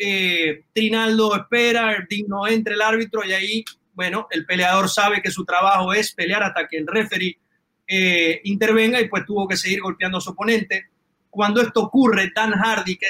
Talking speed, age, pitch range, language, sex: 185 wpm, 30-49, 180-220 Hz, Spanish, male